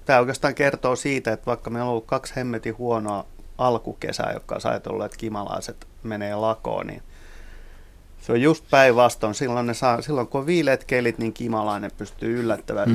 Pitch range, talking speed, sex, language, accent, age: 105-125 Hz, 160 wpm, male, Finnish, native, 30-49